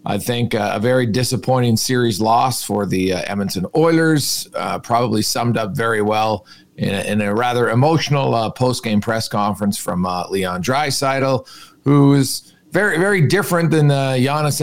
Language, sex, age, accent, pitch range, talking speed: English, male, 40-59, American, 115-145 Hz, 170 wpm